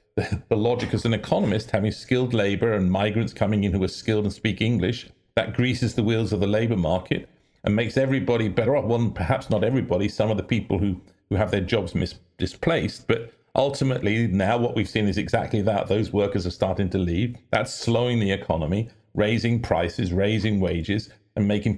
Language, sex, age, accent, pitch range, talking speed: English, male, 50-69, British, 95-120 Hz, 195 wpm